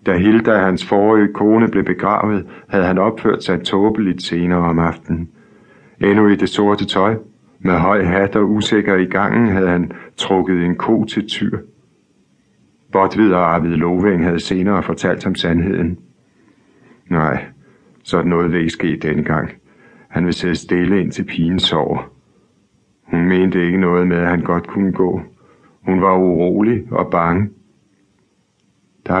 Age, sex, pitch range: 60-79, male, 85-100 Hz